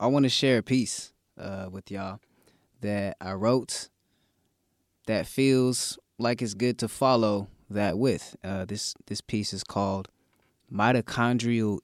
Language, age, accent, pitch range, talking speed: English, 20-39, American, 95-135 Hz, 140 wpm